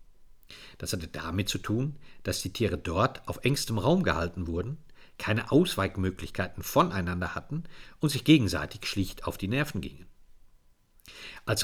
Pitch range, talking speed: 95-130 Hz, 140 wpm